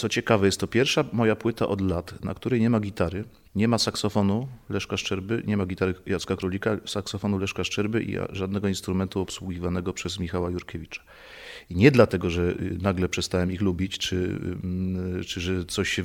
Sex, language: male, Polish